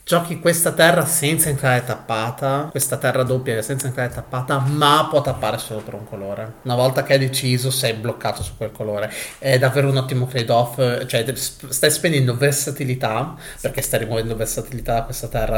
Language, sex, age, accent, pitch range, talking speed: Italian, male, 30-49, native, 110-130 Hz, 175 wpm